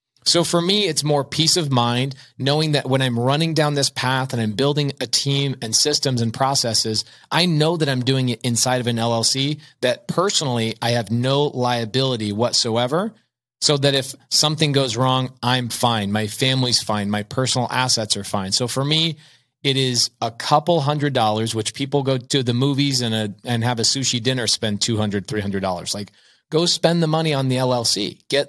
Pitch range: 120-145 Hz